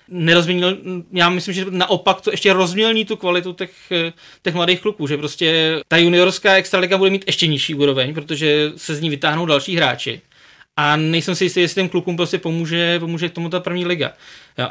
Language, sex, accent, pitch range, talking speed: Czech, male, native, 150-175 Hz, 190 wpm